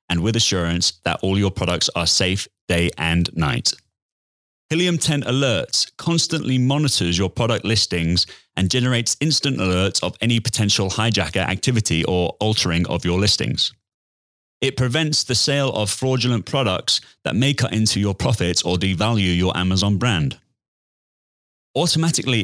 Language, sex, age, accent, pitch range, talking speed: English, male, 30-49, British, 90-125 Hz, 140 wpm